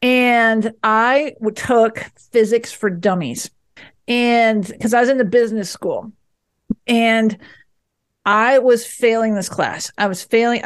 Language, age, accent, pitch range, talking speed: English, 50-69, American, 205-260 Hz, 130 wpm